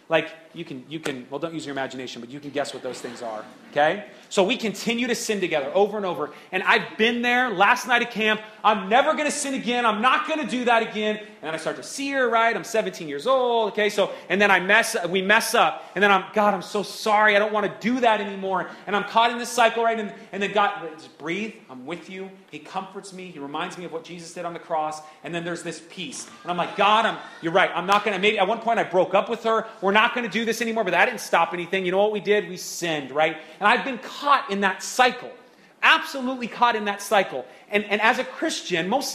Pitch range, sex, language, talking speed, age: 175-230 Hz, male, English, 270 wpm, 30-49